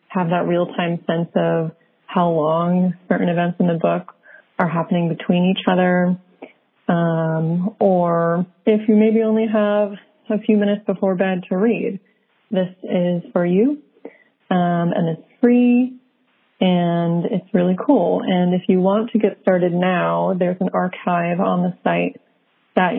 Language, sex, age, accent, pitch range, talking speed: English, female, 30-49, American, 170-210 Hz, 150 wpm